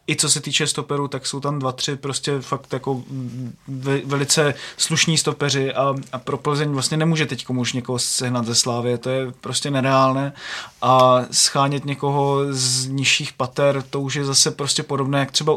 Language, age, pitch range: Czech, 20-39, 130-150 Hz